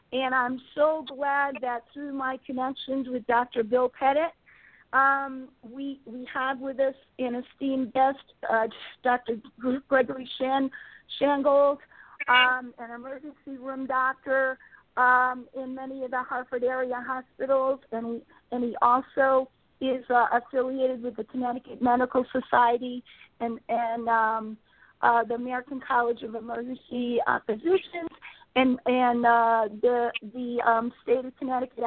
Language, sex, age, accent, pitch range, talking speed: English, female, 40-59, American, 240-270 Hz, 135 wpm